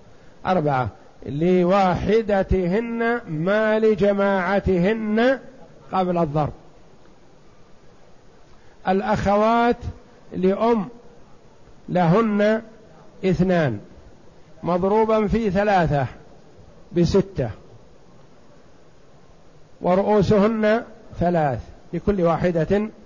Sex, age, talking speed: male, 50-69, 45 wpm